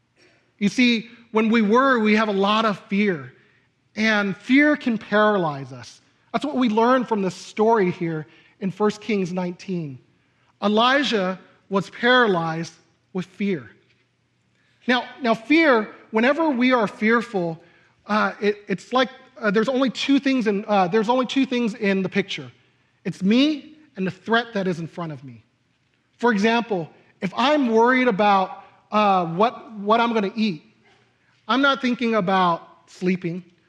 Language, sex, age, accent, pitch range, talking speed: English, male, 40-59, American, 170-230 Hz, 155 wpm